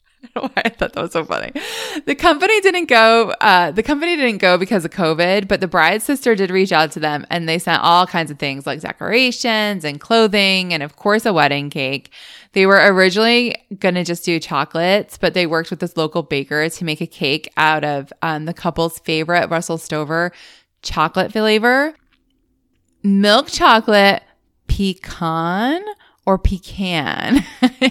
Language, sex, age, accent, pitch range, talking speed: English, female, 20-39, American, 170-245 Hz, 165 wpm